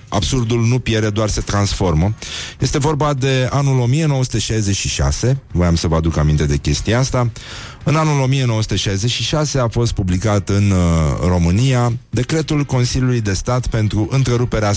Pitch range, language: 95-120 Hz, Romanian